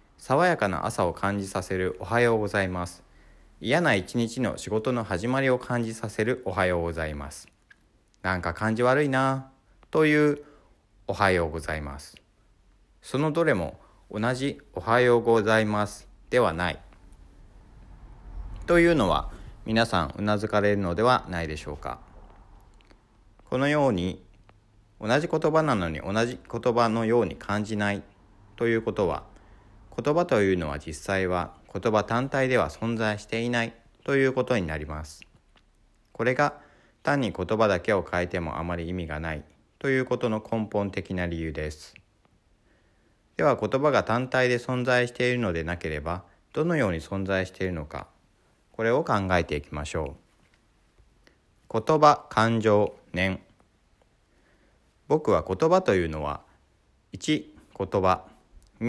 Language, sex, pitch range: Japanese, male, 90-115 Hz